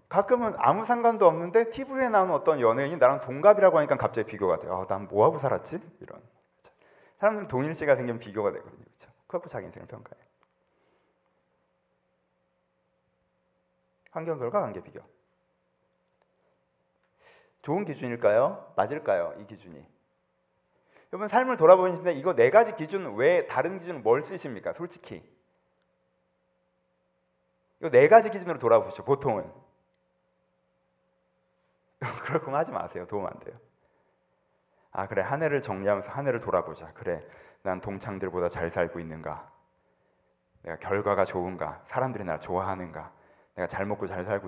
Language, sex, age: Korean, male, 40-59